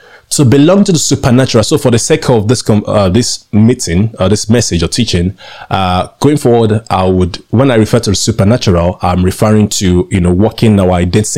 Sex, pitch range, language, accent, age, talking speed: male, 95-125 Hz, English, Nigerian, 20-39, 210 wpm